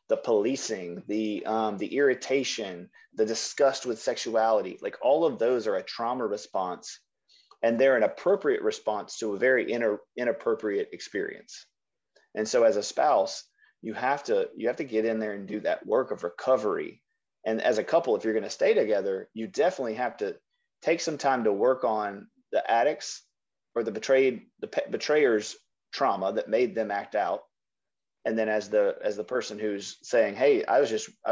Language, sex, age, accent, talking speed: English, male, 30-49, American, 185 wpm